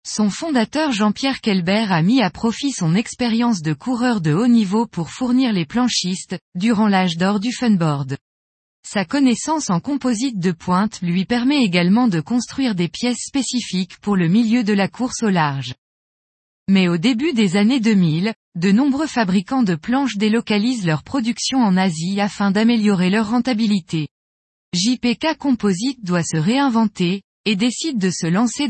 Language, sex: French, female